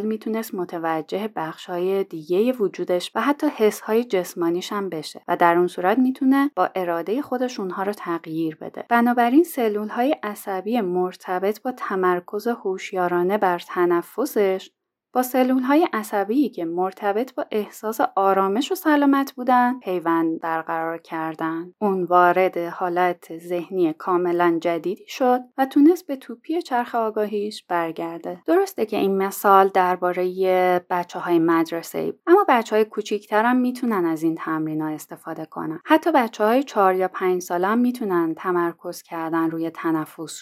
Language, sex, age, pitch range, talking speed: Persian, female, 30-49, 175-235 Hz, 140 wpm